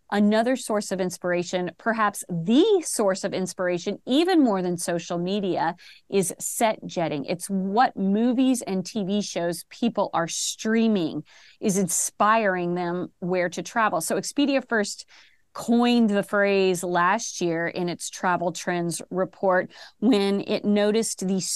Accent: American